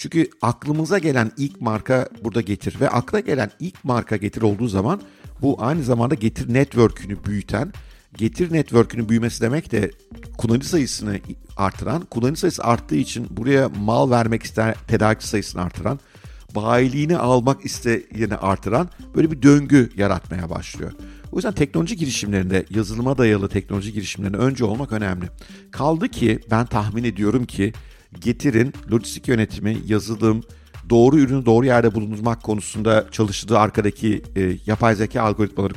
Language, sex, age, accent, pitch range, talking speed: Turkish, male, 50-69, native, 105-130 Hz, 140 wpm